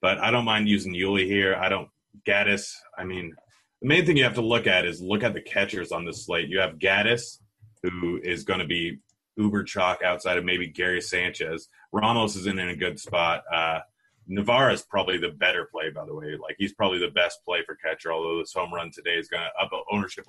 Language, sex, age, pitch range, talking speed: English, male, 30-49, 90-105 Hz, 230 wpm